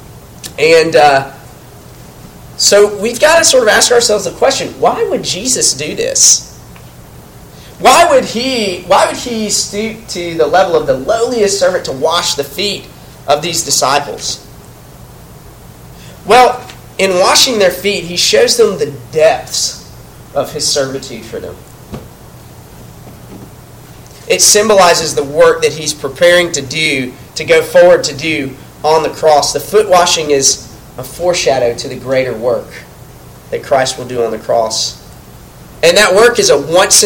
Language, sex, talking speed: English, male, 150 wpm